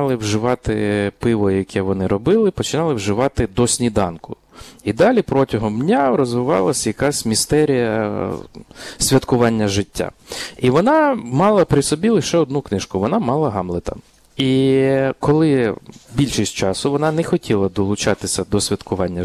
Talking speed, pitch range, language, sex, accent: 125 wpm, 110-140 Hz, Ukrainian, male, native